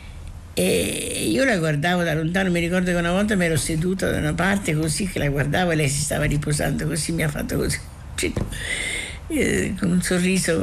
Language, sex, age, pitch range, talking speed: Italian, female, 60-79, 140-185 Hz, 190 wpm